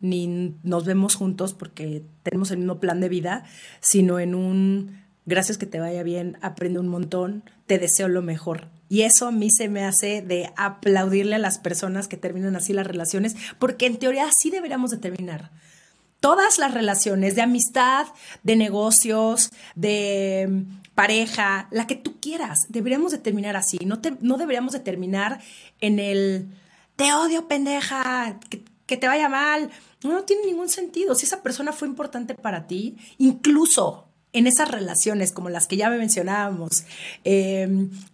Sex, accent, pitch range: female, Mexican, 190-260 Hz